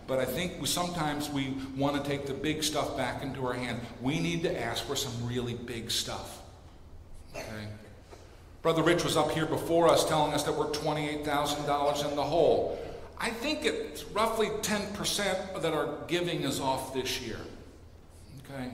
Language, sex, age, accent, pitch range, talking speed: English, male, 50-69, American, 120-185 Hz, 175 wpm